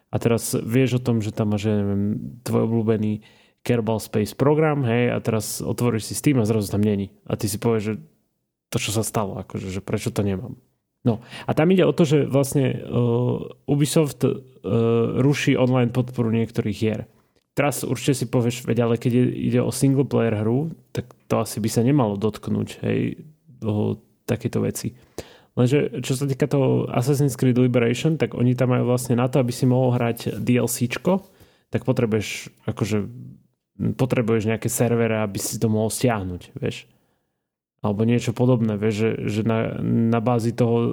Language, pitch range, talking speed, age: Slovak, 110-130 Hz, 175 wpm, 30-49